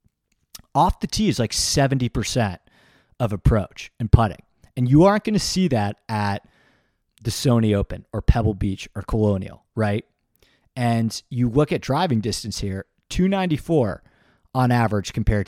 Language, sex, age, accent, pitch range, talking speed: English, male, 30-49, American, 105-130 Hz, 145 wpm